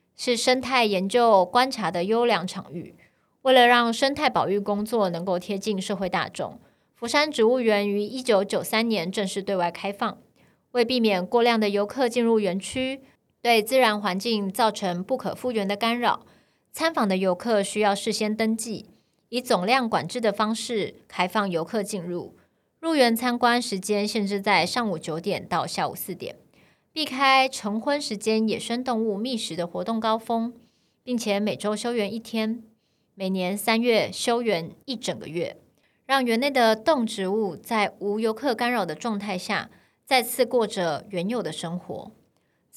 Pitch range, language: 200-240 Hz, Chinese